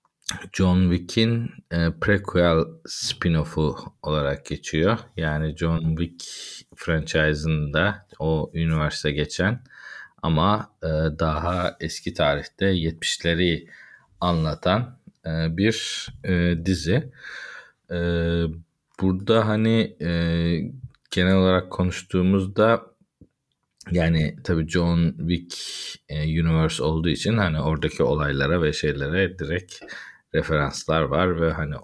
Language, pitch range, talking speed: Turkish, 80-95 Hz, 95 wpm